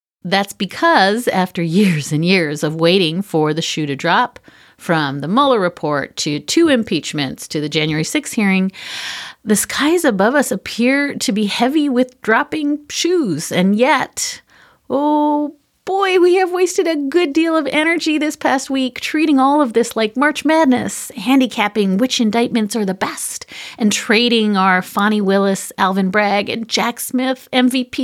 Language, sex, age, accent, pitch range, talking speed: English, female, 40-59, American, 180-255 Hz, 160 wpm